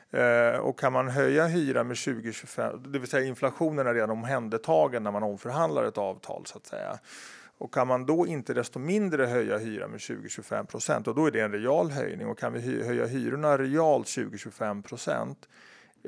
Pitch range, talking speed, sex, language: 115-140 Hz, 180 wpm, male, Swedish